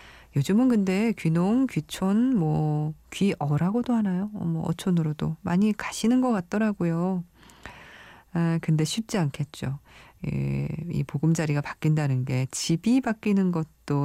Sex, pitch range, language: female, 145-190 Hz, Korean